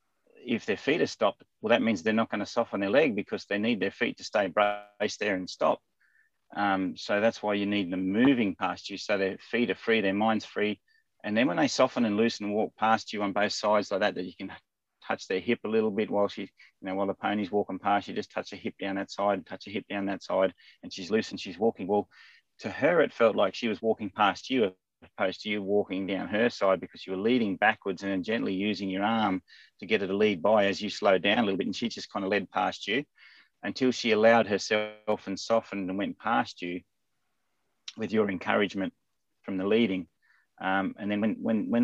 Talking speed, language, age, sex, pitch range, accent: 240 wpm, English, 30-49, male, 95-110 Hz, Australian